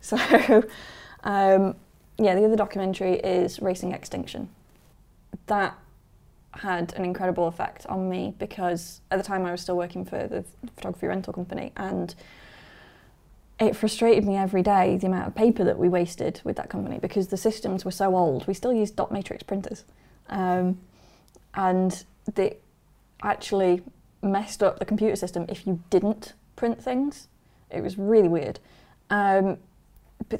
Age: 20-39